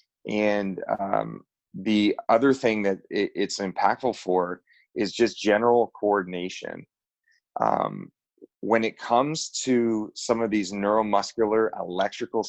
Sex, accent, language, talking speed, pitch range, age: male, American, English, 110 wpm, 100-120 Hz, 30-49